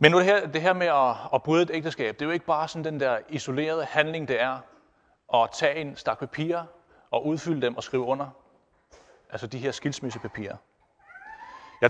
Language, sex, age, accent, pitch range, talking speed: Danish, male, 30-49, native, 140-195 Hz, 200 wpm